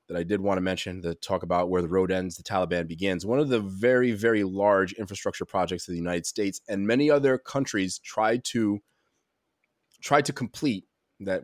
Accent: American